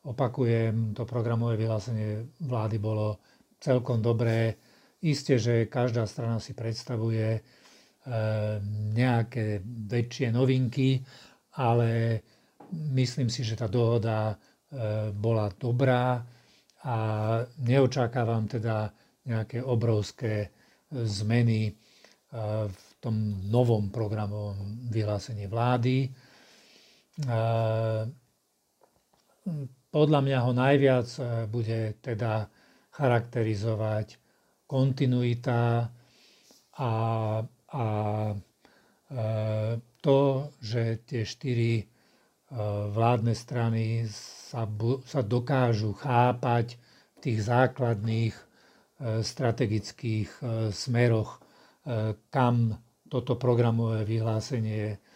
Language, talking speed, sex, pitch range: Slovak, 75 wpm, male, 110-125 Hz